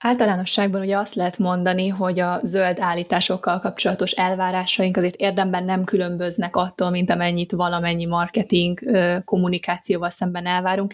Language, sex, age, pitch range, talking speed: Hungarian, female, 20-39, 180-195 Hz, 125 wpm